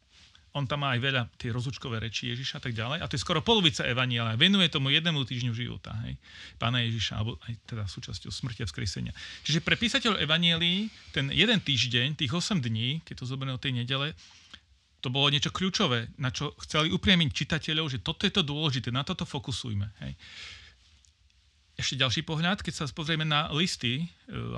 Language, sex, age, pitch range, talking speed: Slovak, male, 40-59, 115-155 Hz, 185 wpm